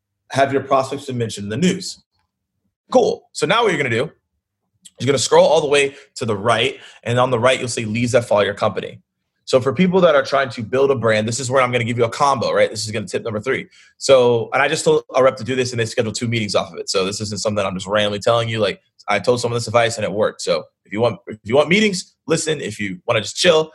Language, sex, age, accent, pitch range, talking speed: English, male, 20-39, American, 125-175 Hz, 295 wpm